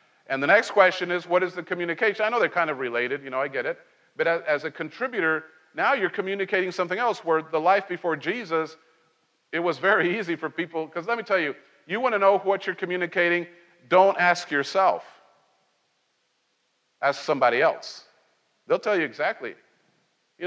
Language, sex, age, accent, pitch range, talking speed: English, male, 50-69, American, 150-190 Hz, 185 wpm